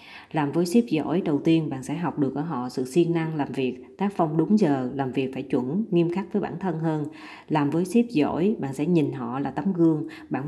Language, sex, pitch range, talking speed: Vietnamese, female, 140-180 Hz, 245 wpm